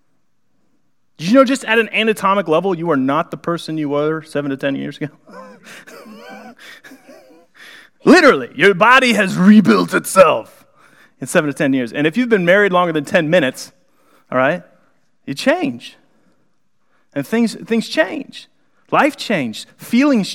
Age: 30-49